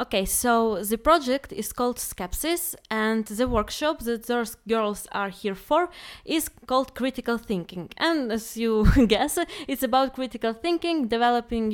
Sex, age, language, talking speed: female, 20-39, English, 150 wpm